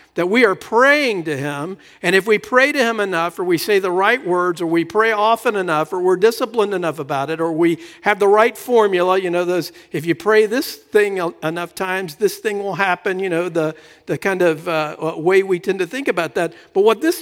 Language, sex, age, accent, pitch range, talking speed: English, male, 50-69, American, 185-275 Hz, 235 wpm